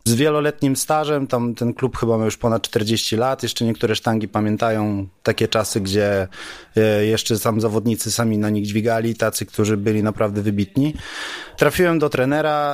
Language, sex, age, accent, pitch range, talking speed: Polish, male, 30-49, native, 115-145 Hz, 160 wpm